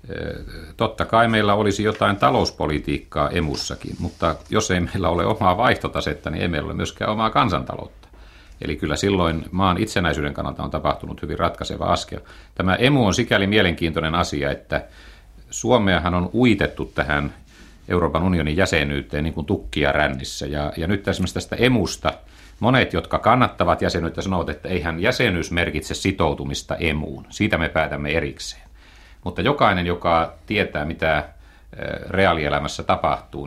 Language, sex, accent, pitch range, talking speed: Finnish, male, native, 75-100 Hz, 140 wpm